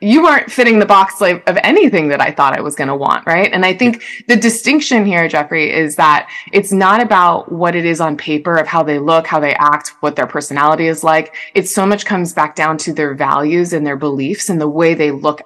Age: 20-39